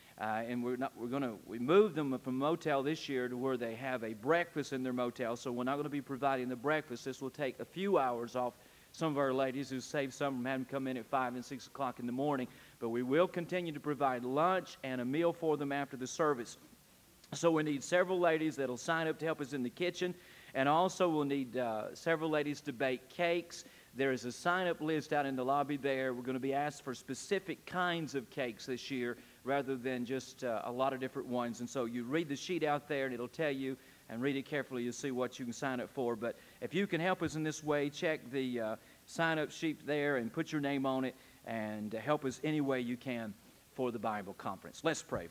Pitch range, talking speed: 125-155 Hz, 250 wpm